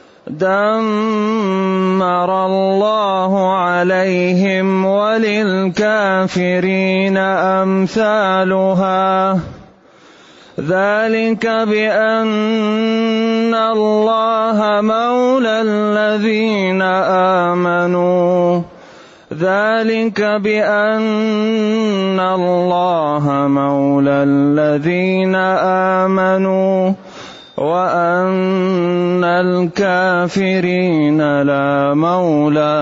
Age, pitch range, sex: 30-49, 185-215 Hz, male